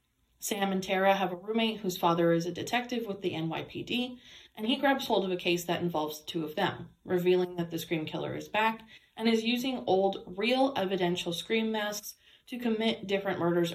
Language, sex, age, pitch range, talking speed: English, female, 20-39, 170-215 Hz, 195 wpm